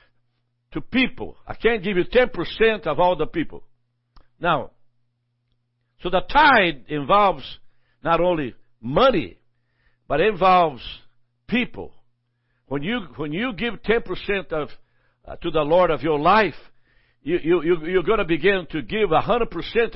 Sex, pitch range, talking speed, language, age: male, 120-205 Hz, 150 wpm, English, 60-79